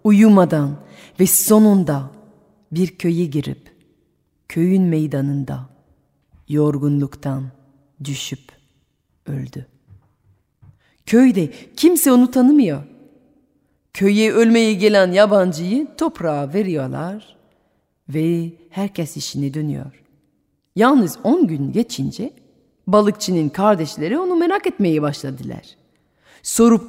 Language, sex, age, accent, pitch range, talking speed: Turkish, female, 40-59, native, 140-205 Hz, 80 wpm